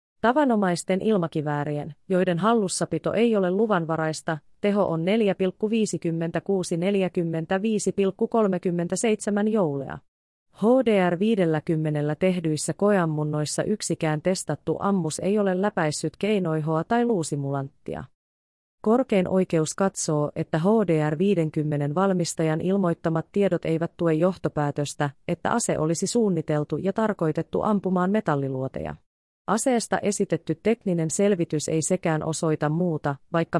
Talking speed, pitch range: 95 wpm, 155-195 Hz